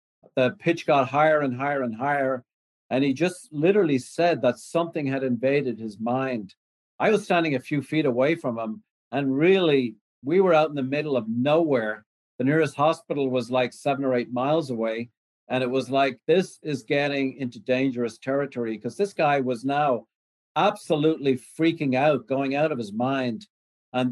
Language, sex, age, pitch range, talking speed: English, male, 50-69, 120-150 Hz, 180 wpm